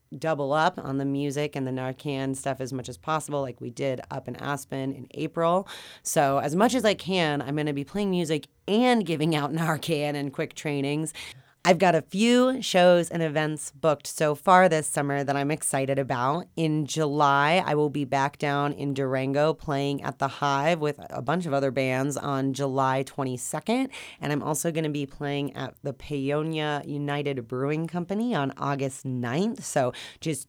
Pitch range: 135-155 Hz